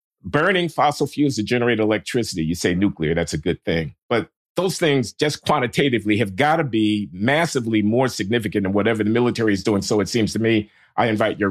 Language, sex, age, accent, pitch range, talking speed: English, male, 50-69, American, 110-140 Hz, 205 wpm